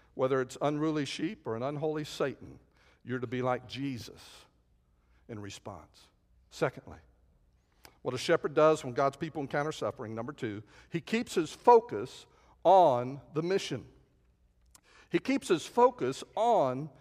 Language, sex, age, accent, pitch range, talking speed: English, male, 60-79, American, 140-225 Hz, 140 wpm